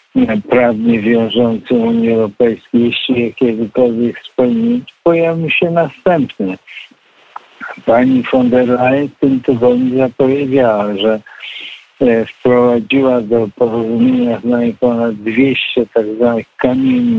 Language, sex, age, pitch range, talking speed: Polish, male, 50-69, 110-130 Hz, 105 wpm